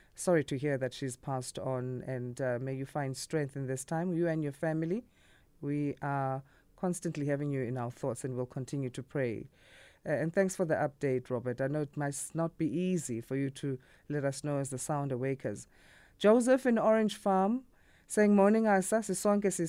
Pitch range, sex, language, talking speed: 145-190 Hz, female, English, 195 wpm